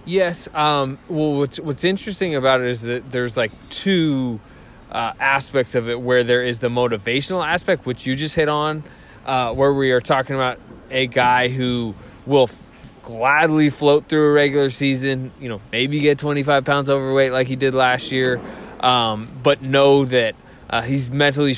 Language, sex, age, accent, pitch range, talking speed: English, male, 20-39, American, 120-145 Hz, 180 wpm